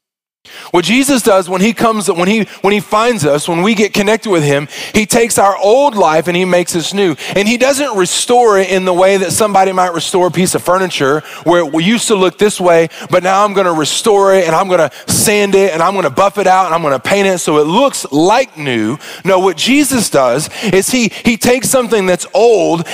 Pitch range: 175-220 Hz